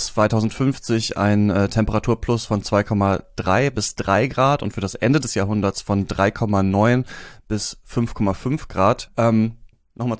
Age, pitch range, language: 30-49, 105-120 Hz, German